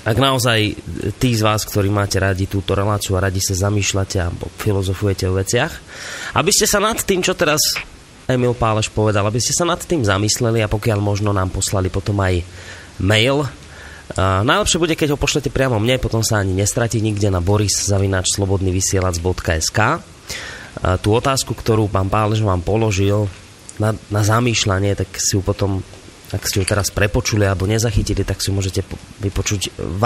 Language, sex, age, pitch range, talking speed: Slovak, male, 20-39, 95-125 Hz, 170 wpm